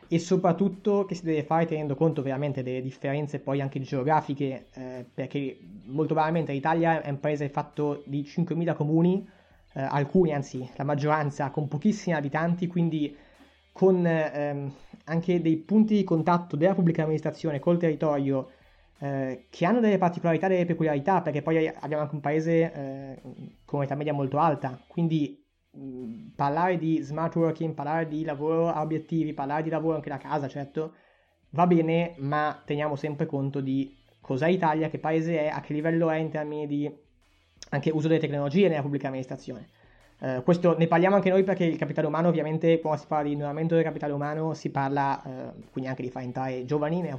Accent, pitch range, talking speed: native, 140-165 Hz, 175 wpm